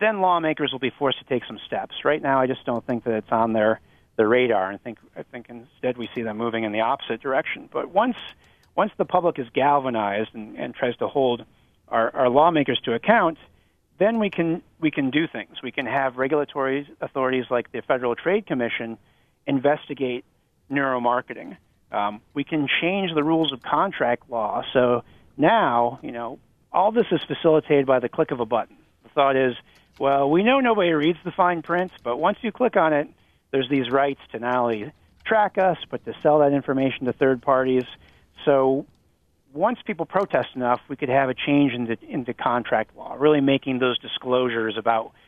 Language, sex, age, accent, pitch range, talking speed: English, male, 40-59, American, 120-160 Hz, 195 wpm